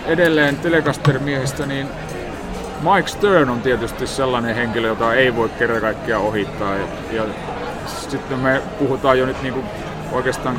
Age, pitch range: 30-49, 115-145 Hz